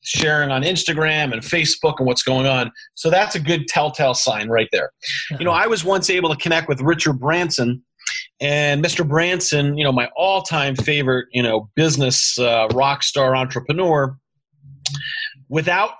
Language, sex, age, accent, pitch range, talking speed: English, male, 30-49, American, 135-180 Hz, 170 wpm